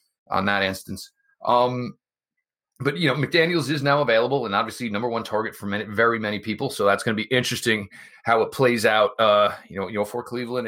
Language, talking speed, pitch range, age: English, 215 wpm, 105-125 Hz, 30-49